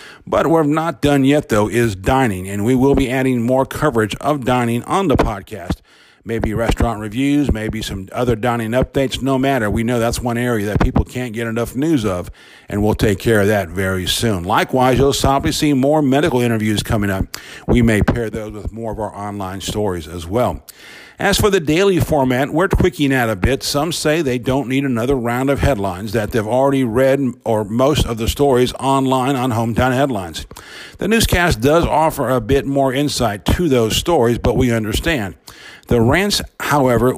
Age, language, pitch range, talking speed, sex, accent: 50-69, English, 110-140 Hz, 195 wpm, male, American